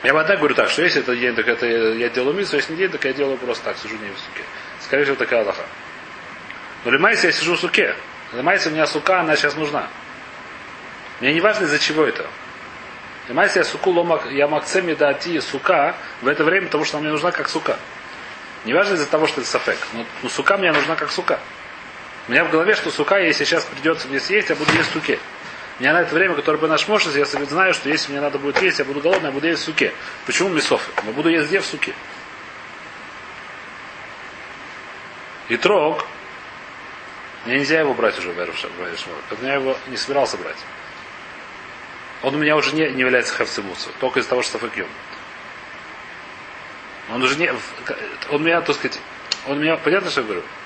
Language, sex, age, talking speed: Russian, male, 30-49, 205 wpm